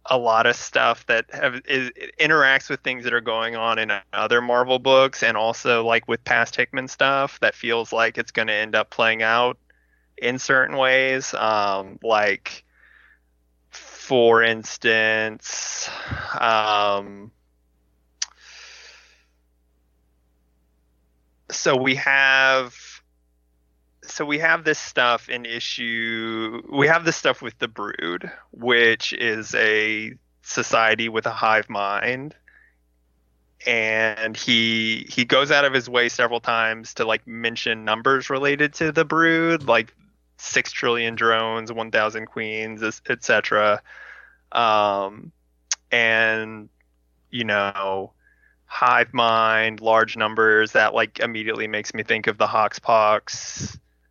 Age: 20-39